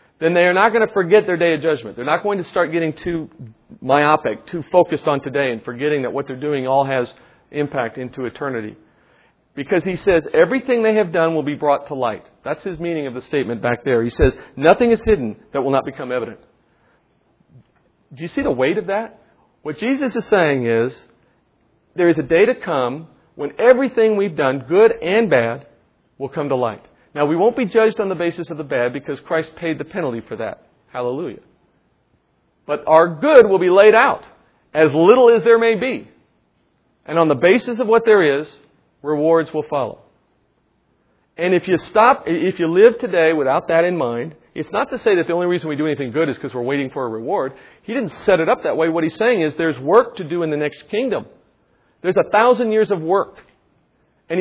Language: English